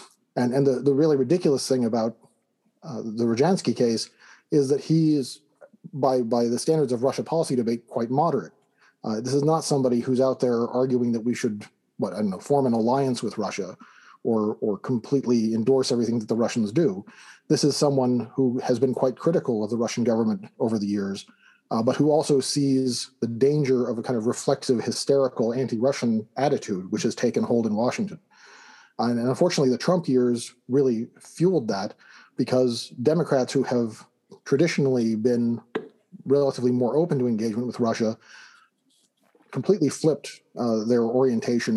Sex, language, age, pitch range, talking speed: male, English, 40-59, 115-135 Hz, 170 wpm